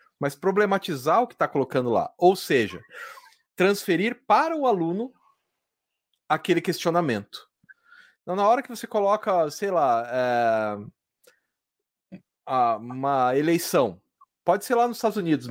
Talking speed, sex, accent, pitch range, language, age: 125 wpm, male, Brazilian, 155-220 Hz, Portuguese, 30-49